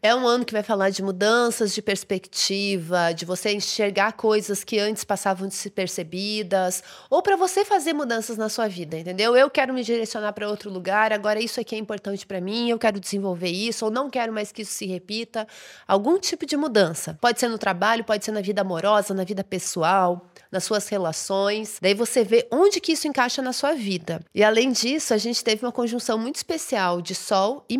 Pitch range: 200-245 Hz